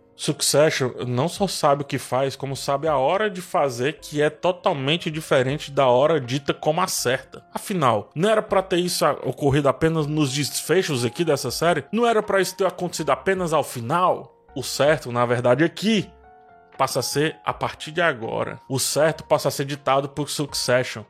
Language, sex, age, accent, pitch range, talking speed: Portuguese, male, 20-39, Brazilian, 130-165 Hz, 190 wpm